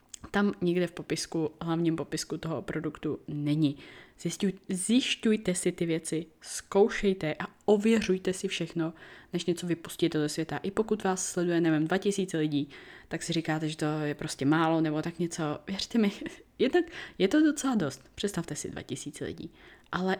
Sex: female